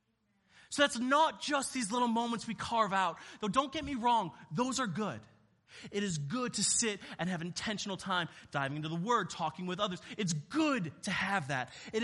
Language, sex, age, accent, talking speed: English, male, 20-39, American, 200 wpm